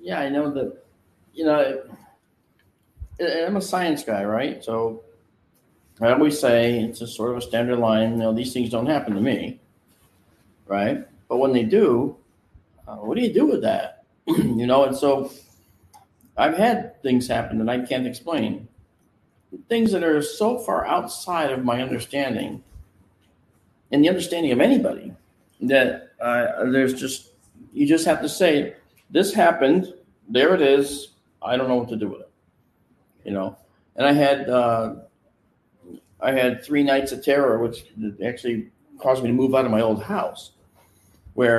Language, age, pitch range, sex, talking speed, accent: English, 50-69, 110-135 Hz, male, 165 wpm, American